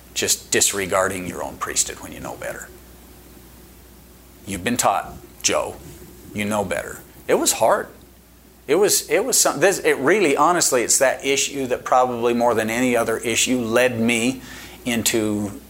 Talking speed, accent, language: 155 wpm, American, English